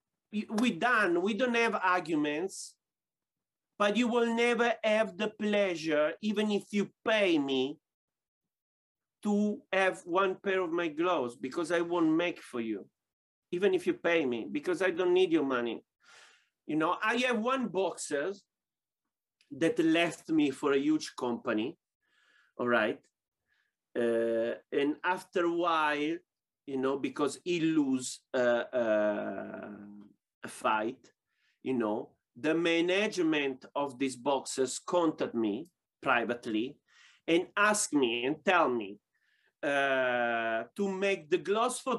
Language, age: English, 40-59